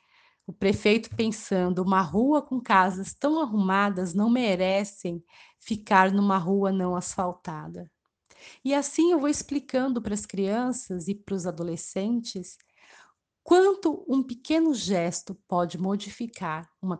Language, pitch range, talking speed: Portuguese, 180-220 Hz, 125 wpm